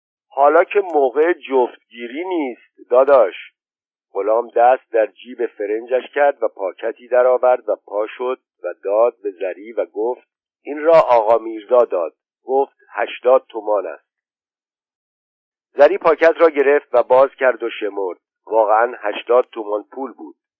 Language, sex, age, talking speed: Persian, male, 50-69, 135 wpm